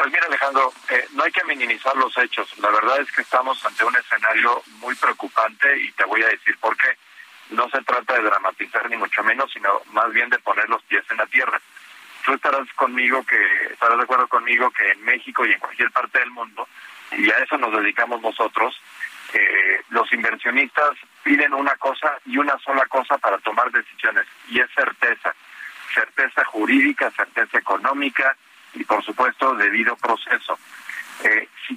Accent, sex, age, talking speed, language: Mexican, male, 40-59, 175 wpm, Spanish